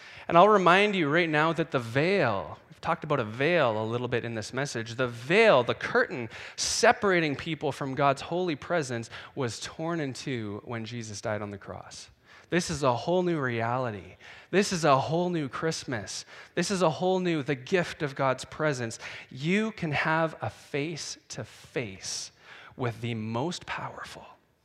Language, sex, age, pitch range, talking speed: English, male, 20-39, 110-155 Hz, 175 wpm